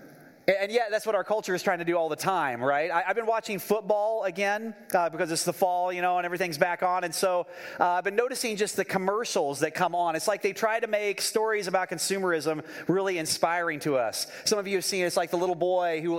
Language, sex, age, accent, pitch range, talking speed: English, male, 30-49, American, 160-210 Hz, 250 wpm